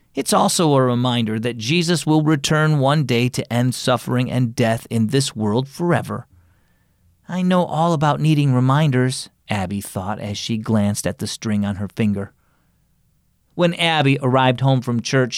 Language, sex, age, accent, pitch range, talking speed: English, male, 40-59, American, 125-175 Hz, 165 wpm